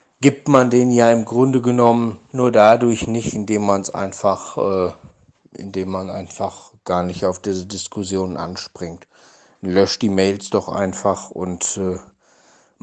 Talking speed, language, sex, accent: 145 wpm, German, male, German